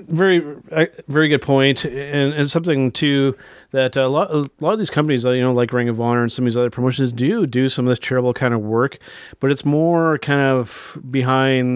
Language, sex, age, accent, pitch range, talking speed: English, male, 30-49, American, 120-140 Hz, 220 wpm